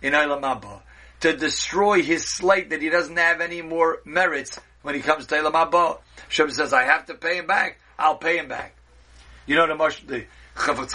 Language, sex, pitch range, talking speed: English, male, 115-165 Hz, 205 wpm